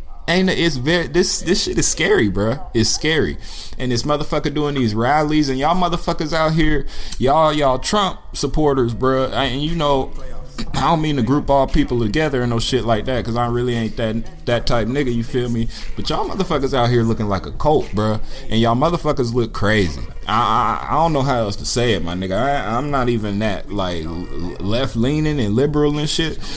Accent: American